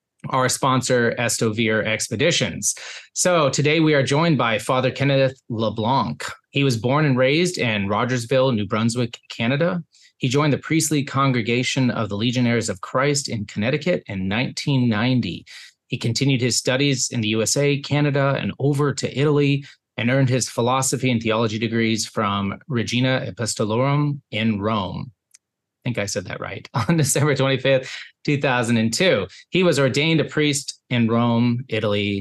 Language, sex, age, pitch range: English, male, 20-39, 110-140 Hz